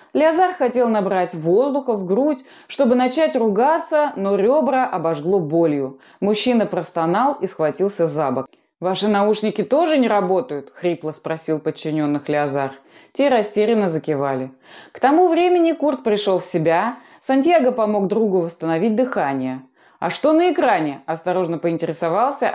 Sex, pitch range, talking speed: female, 165-250 Hz, 130 wpm